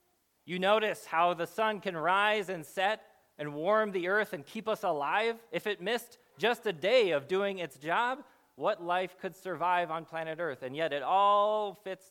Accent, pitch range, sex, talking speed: American, 145-210 Hz, male, 195 wpm